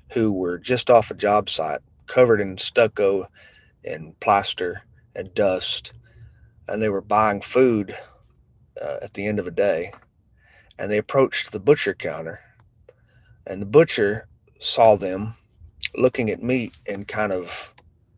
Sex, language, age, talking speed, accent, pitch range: male, English, 30-49, 140 wpm, American, 95-125 Hz